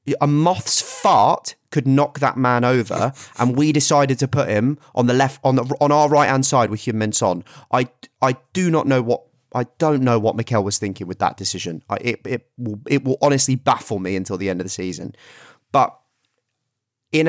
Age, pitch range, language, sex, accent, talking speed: 30-49, 100-135 Hz, English, male, British, 210 wpm